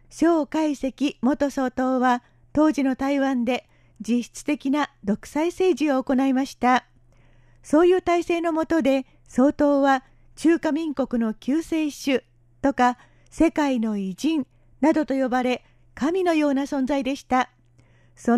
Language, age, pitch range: Japanese, 40-59, 240-310 Hz